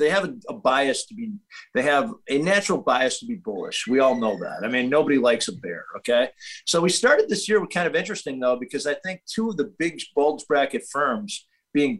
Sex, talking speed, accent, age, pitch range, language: male, 230 wpm, American, 50-69, 130-195 Hz, English